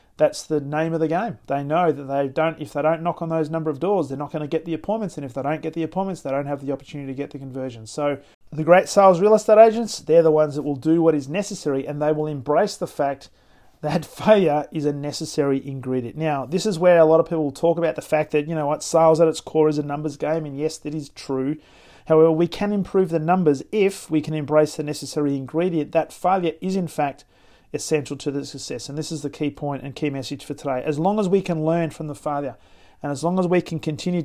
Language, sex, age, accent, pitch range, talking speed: English, male, 40-59, Australian, 145-165 Hz, 265 wpm